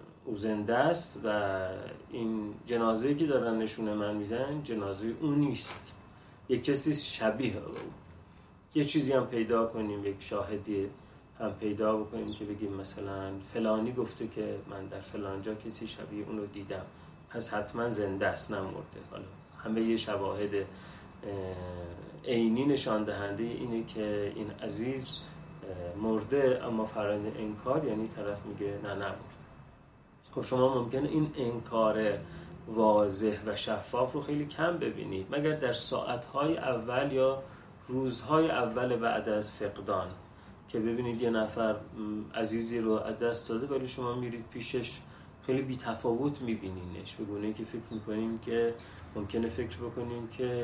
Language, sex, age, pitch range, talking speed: Persian, male, 30-49, 105-120 Hz, 135 wpm